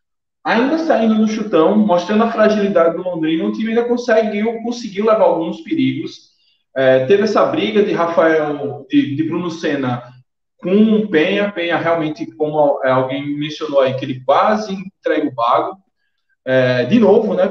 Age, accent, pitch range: 20-39, Brazilian, 145-210 Hz